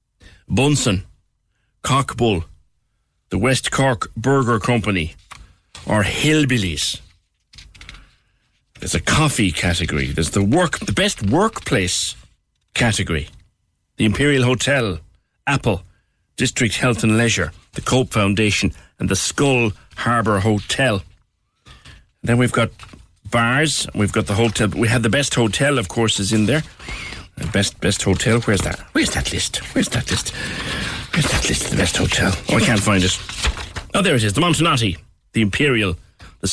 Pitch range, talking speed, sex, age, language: 90-120 Hz, 145 wpm, male, 60-79, English